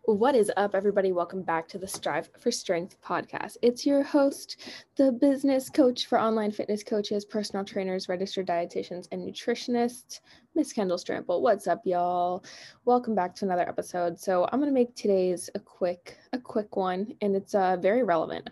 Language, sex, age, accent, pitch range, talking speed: English, female, 10-29, American, 175-220 Hz, 180 wpm